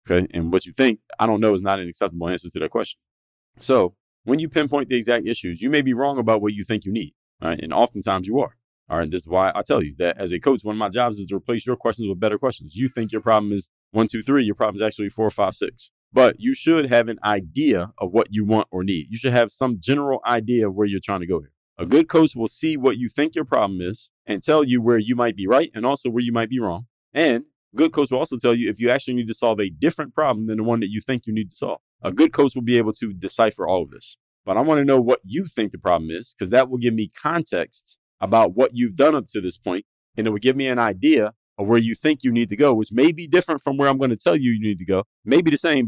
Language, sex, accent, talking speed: English, male, American, 295 wpm